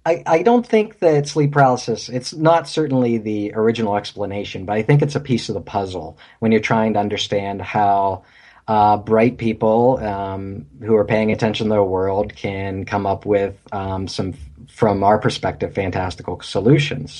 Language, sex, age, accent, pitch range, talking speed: English, male, 40-59, American, 100-135 Hz, 175 wpm